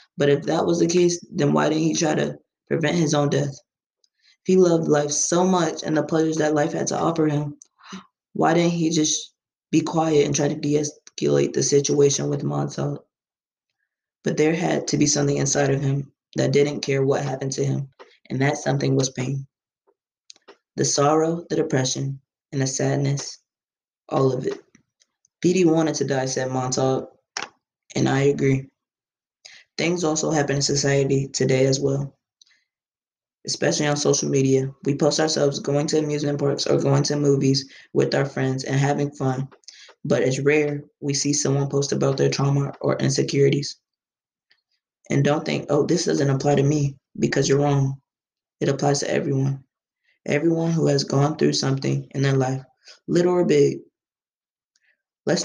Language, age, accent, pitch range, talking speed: English, 20-39, American, 135-155 Hz, 170 wpm